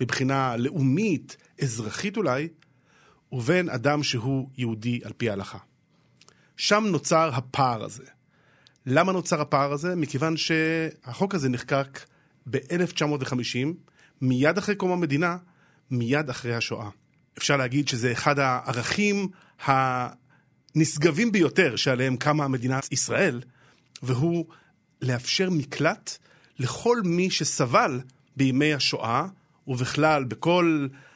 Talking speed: 100 wpm